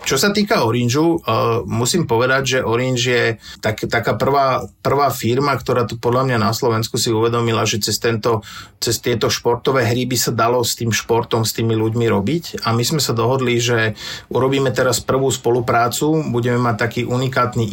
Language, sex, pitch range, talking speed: Slovak, male, 115-130 Hz, 185 wpm